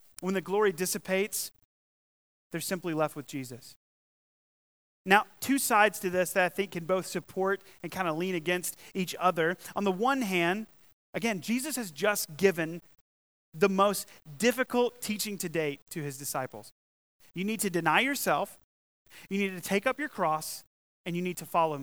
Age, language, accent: 30-49, English, American